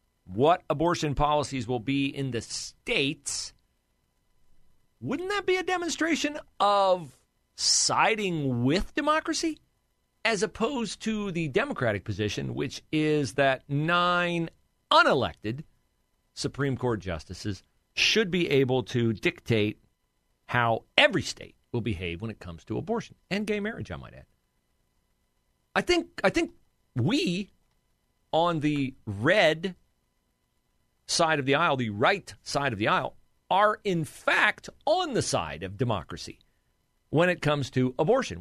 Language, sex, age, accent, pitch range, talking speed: English, male, 40-59, American, 115-190 Hz, 130 wpm